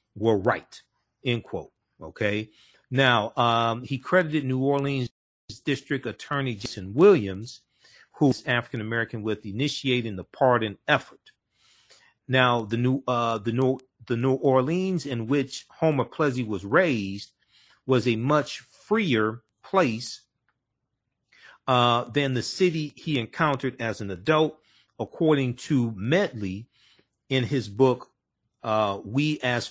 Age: 40-59